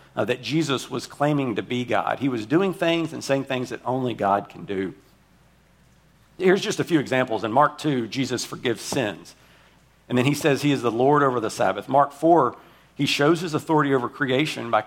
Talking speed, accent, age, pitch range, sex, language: 205 wpm, American, 50-69, 120-150 Hz, male, English